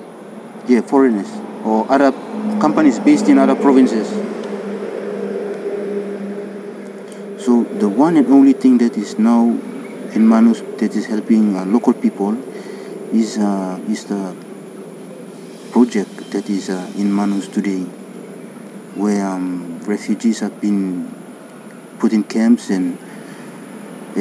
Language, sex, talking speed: English, male, 115 wpm